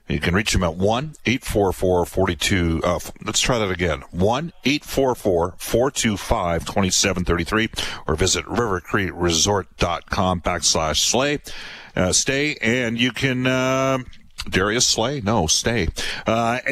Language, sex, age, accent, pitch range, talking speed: English, male, 50-69, American, 90-125 Hz, 100 wpm